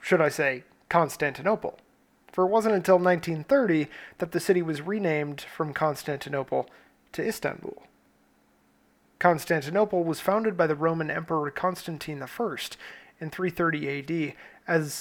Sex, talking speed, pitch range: male, 125 wpm, 150-180 Hz